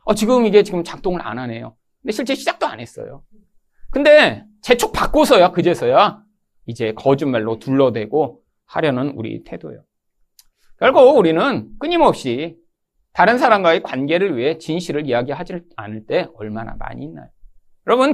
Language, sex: Korean, male